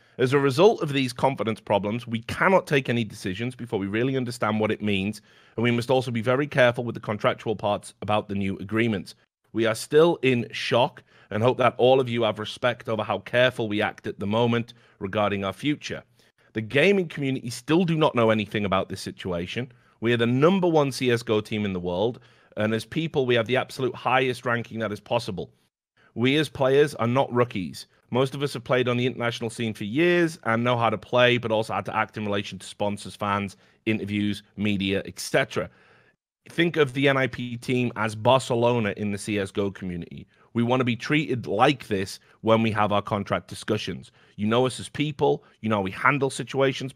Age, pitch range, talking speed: 30-49, 105-130 Hz, 205 wpm